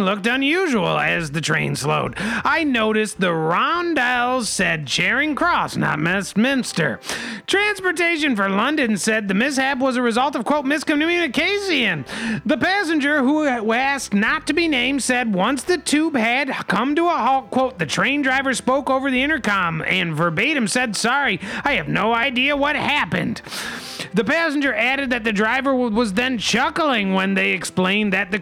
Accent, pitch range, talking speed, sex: American, 200-275 Hz, 160 wpm, male